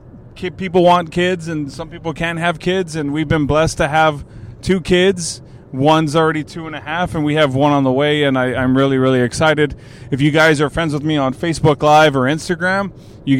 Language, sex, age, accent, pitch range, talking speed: English, male, 30-49, American, 125-155 Hz, 225 wpm